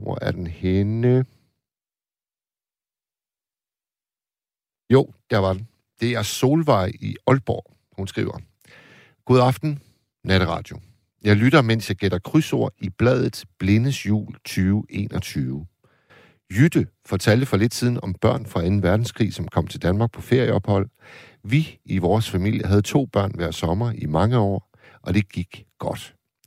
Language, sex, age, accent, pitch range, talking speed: Danish, male, 60-79, native, 95-125 Hz, 135 wpm